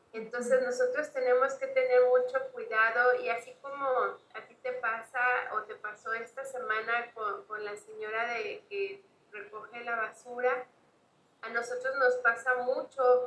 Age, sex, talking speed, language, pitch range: 30-49, female, 150 wpm, Spanish, 230-305 Hz